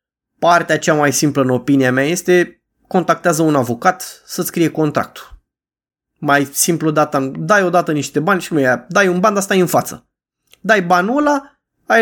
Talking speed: 170 wpm